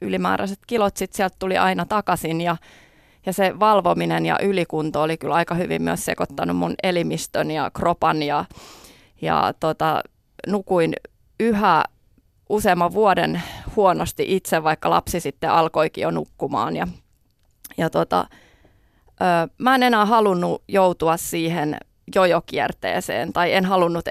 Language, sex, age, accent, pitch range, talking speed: Finnish, female, 30-49, native, 160-205 Hz, 130 wpm